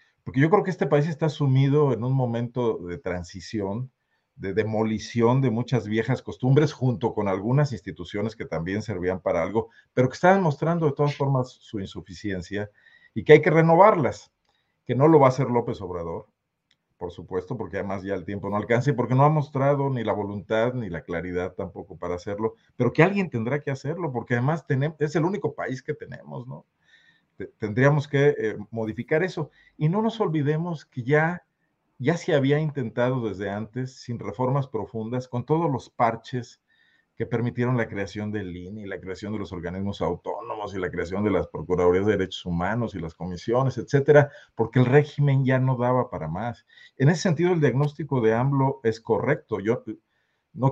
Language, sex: Spanish, male